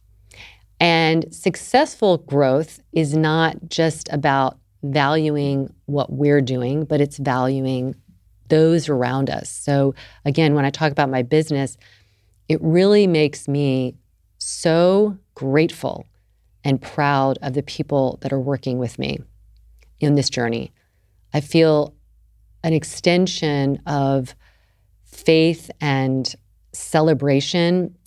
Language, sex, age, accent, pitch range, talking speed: English, female, 40-59, American, 120-160 Hz, 110 wpm